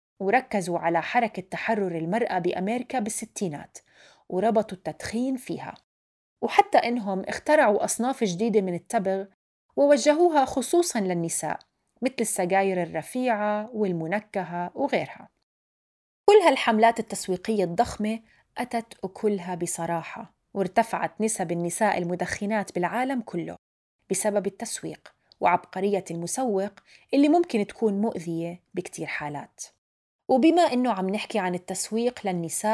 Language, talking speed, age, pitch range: Arabic, 100 wpm, 30-49, 185-240 Hz